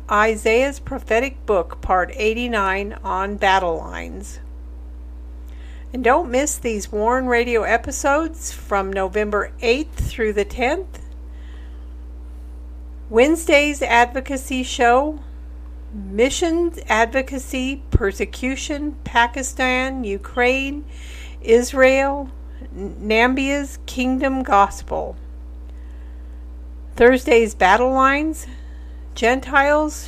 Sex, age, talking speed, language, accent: female, 50-69, 75 wpm, English, American